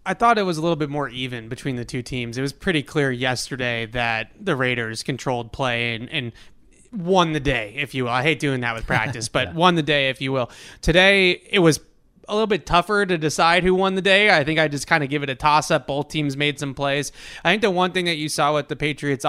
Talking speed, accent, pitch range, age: 260 wpm, American, 140-165 Hz, 20-39